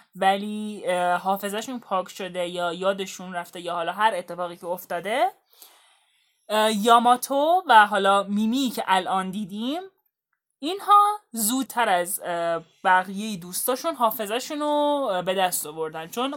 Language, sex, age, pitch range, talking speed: Persian, male, 10-29, 180-235 Hz, 115 wpm